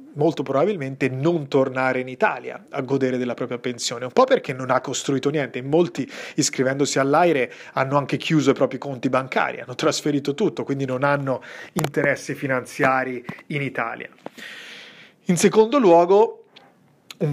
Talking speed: 150 wpm